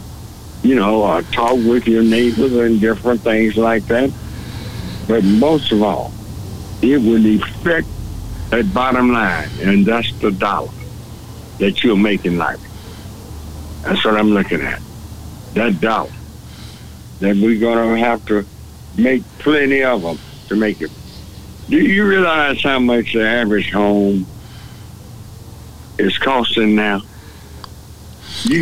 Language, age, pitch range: English, 60-79, 100-120 Hz